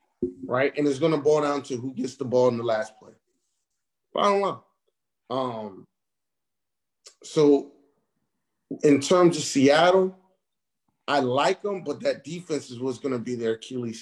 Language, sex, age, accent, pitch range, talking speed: English, male, 30-49, American, 115-150 Hz, 165 wpm